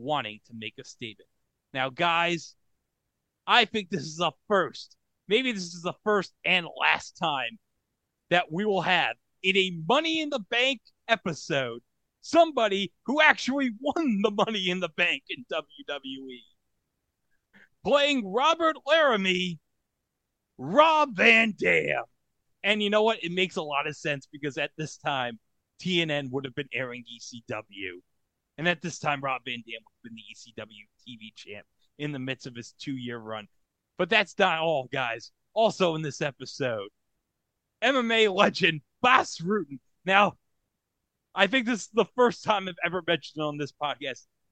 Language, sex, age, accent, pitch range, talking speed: English, male, 30-49, American, 135-205 Hz, 160 wpm